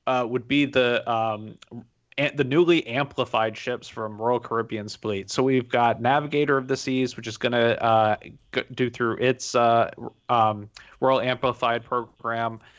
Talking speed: 155 wpm